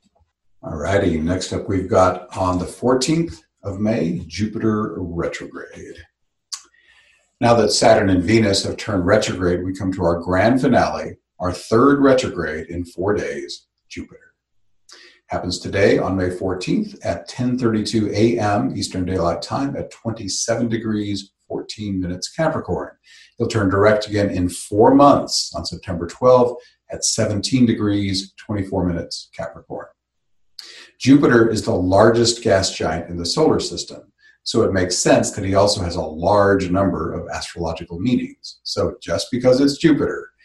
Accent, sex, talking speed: American, male, 140 wpm